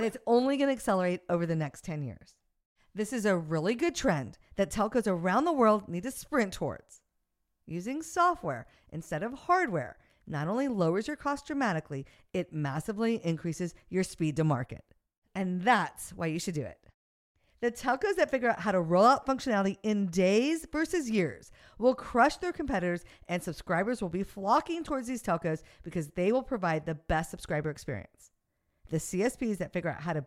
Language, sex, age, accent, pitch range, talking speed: English, female, 50-69, American, 165-265 Hz, 180 wpm